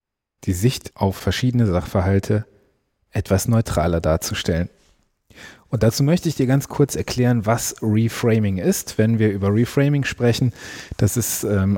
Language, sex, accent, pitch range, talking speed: German, male, German, 105-130 Hz, 140 wpm